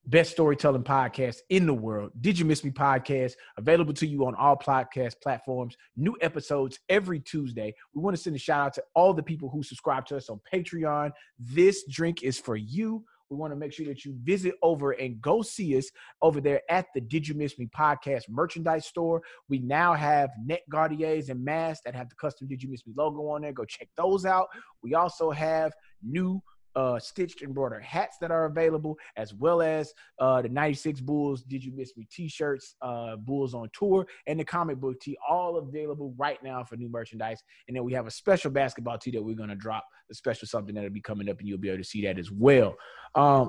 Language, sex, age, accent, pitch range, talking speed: English, male, 30-49, American, 125-160 Hz, 215 wpm